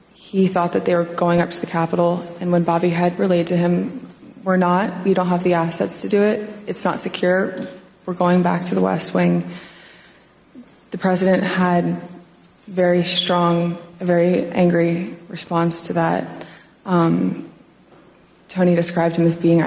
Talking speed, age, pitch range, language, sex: 165 wpm, 20-39, 170-185 Hz, English, female